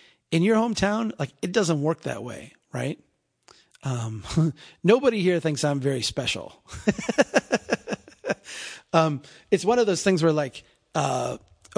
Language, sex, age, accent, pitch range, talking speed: English, male, 30-49, American, 120-165 Hz, 130 wpm